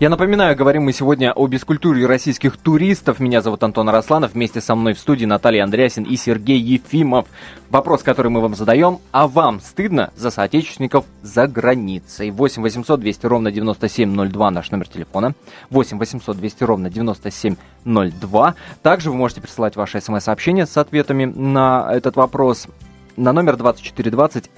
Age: 20-39